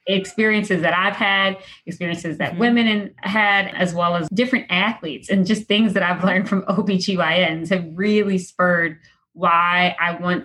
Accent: American